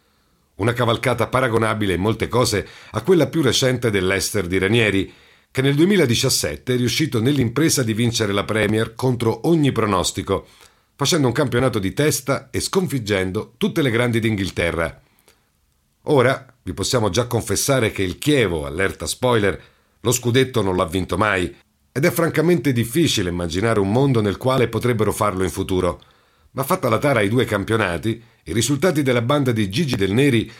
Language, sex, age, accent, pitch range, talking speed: Italian, male, 50-69, native, 100-140 Hz, 160 wpm